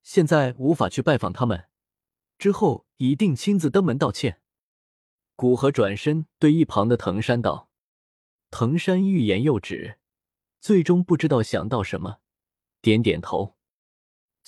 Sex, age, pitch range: male, 20-39, 115-165 Hz